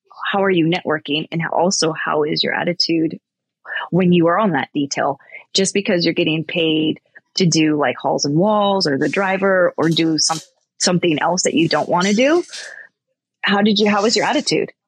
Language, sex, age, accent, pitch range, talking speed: English, female, 20-39, American, 165-210 Hz, 195 wpm